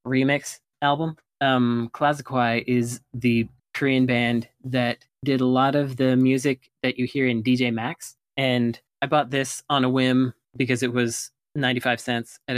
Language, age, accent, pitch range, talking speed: English, 20-39, American, 120-135 Hz, 160 wpm